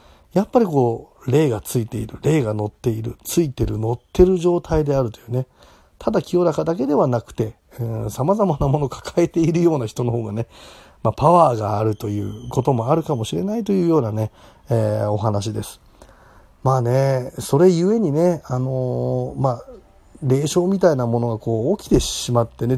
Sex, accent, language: male, native, Japanese